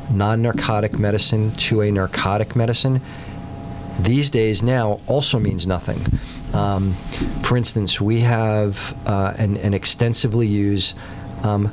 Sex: male